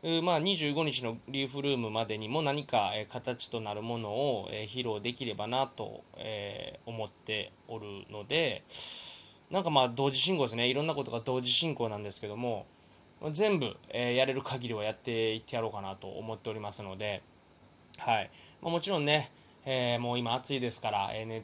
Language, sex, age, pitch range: Japanese, male, 20-39, 110-140 Hz